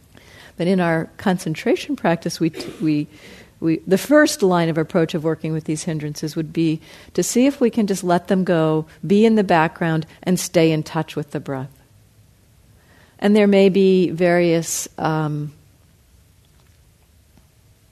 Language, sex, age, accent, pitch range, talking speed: English, female, 50-69, American, 135-180 Hz, 155 wpm